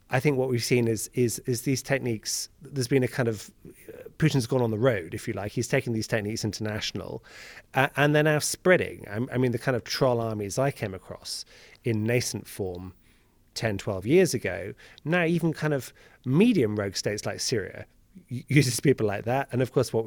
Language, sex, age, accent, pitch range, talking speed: English, male, 30-49, British, 105-125 Hz, 205 wpm